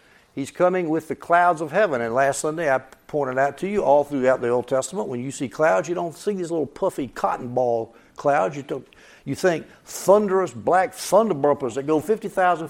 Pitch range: 130-185 Hz